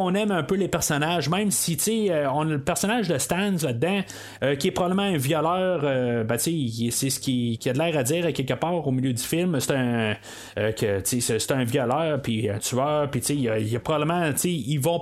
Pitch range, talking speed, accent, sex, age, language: 140-180 Hz, 260 wpm, Canadian, male, 30-49, French